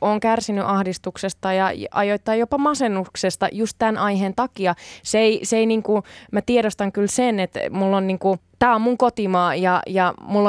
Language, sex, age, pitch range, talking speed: Finnish, female, 20-39, 190-225 Hz, 185 wpm